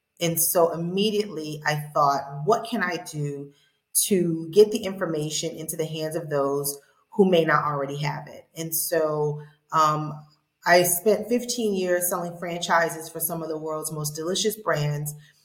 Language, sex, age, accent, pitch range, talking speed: English, female, 30-49, American, 155-185 Hz, 160 wpm